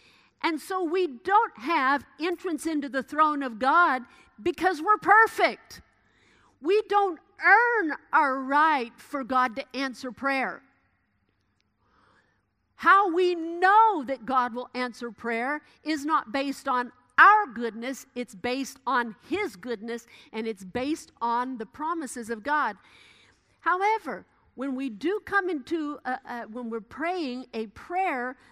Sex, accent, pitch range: female, American, 235-315 Hz